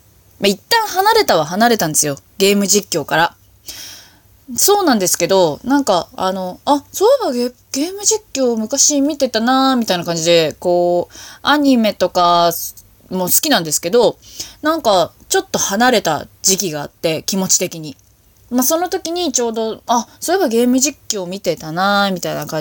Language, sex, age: Japanese, female, 20-39